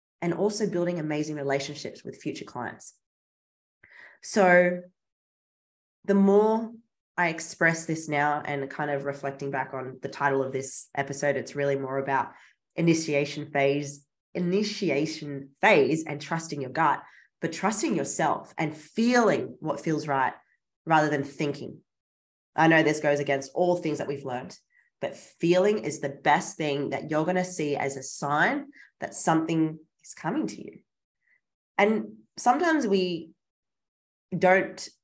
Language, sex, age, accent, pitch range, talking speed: English, female, 20-39, Australian, 140-175 Hz, 140 wpm